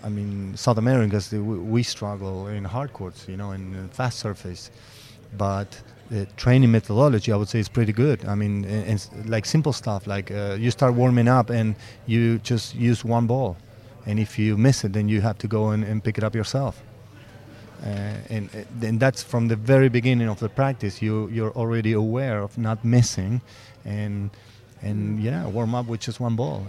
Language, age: English, 30-49